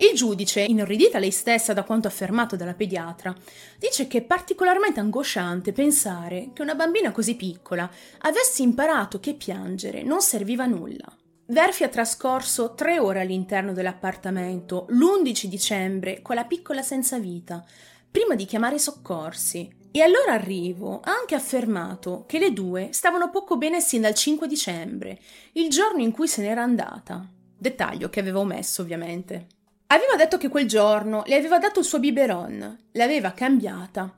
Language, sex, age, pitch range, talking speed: Italian, female, 30-49, 195-295 Hz, 155 wpm